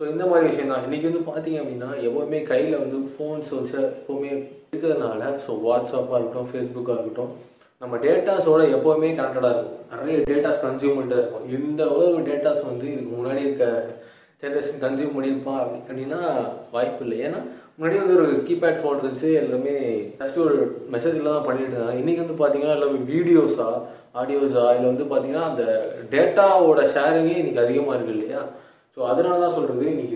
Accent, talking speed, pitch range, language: native, 145 wpm, 120-150 Hz, Tamil